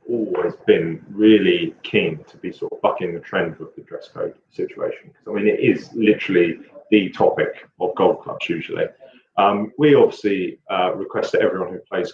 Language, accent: English, British